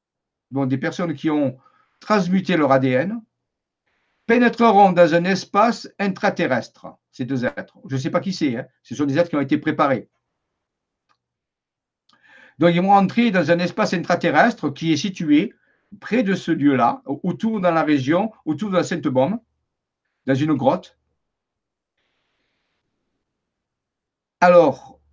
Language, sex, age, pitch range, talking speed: French, male, 50-69, 155-205 Hz, 140 wpm